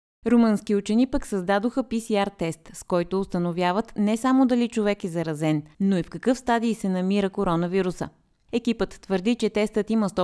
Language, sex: Bulgarian, female